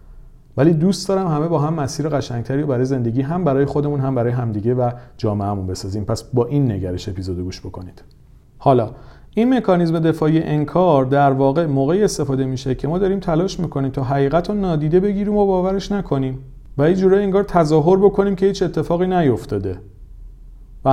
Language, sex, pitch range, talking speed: Persian, male, 115-165 Hz, 175 wpm